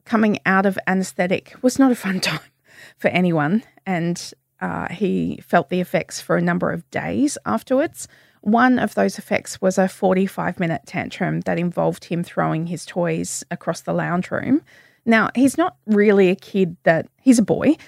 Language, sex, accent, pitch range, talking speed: English, female, Australian, 170-210 Hz, 175 wpm